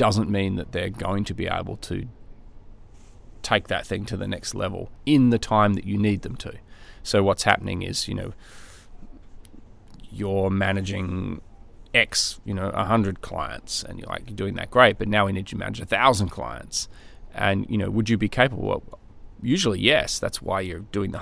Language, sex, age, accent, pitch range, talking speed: English, male, 30-49, Australian, 95-115 Hz, 190 wpm